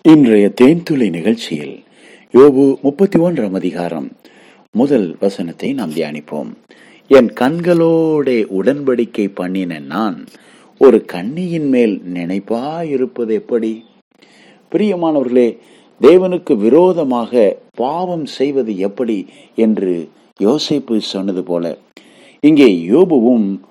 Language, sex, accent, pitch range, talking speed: Tamil, male, native, 105-170 Hz, 55 wpm